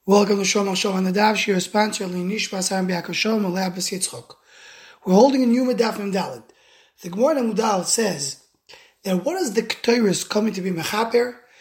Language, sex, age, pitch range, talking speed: English, male, 20-39, 190-250 Hz, 155 wpm